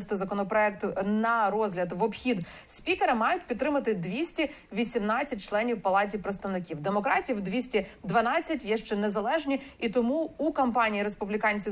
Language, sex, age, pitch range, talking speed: Ukrainian, female, 30-49, 205-255 Hz, 115 wpm